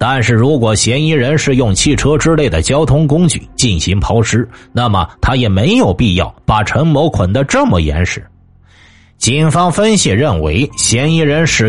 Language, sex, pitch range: Chinese, male, 105-145 Hz